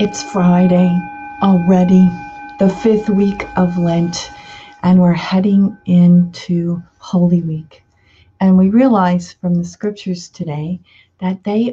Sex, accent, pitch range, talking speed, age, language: female, American, 165-195 Hz, 120 wpm, 50-69, English